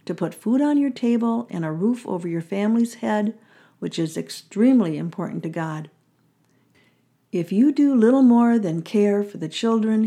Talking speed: 175 wpm